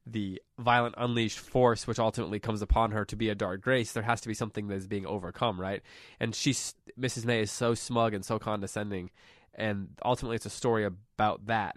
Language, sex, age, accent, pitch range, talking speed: English, male, 20-39, American, 100-115 Hz, 210 wpm